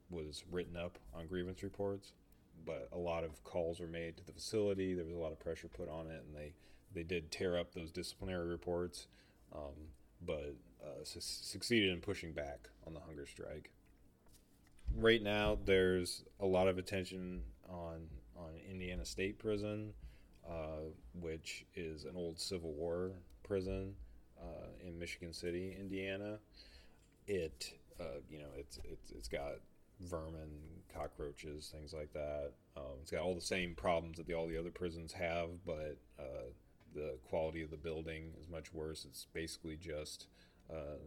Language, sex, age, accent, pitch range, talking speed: English, male, 30-49, American, 80-90 Hz, 165 wpm